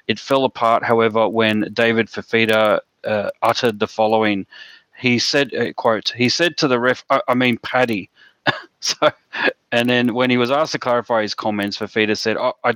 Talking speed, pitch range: 170 wpm, 105-125 Hz